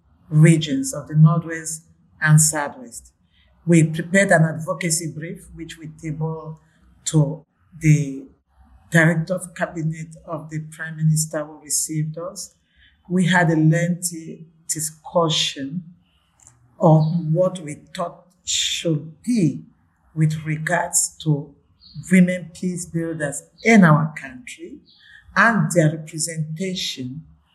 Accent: Nigerian